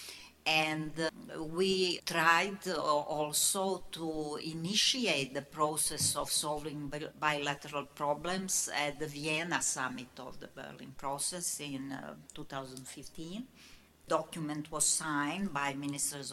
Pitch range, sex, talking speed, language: 150-190 Hz, female, 105 wpm, Hungarian